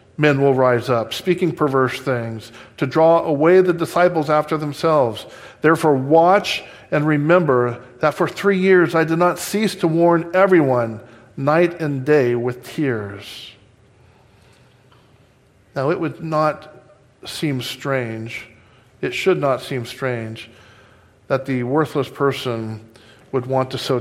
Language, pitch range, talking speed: English, 115-150 Hz, 130 wpm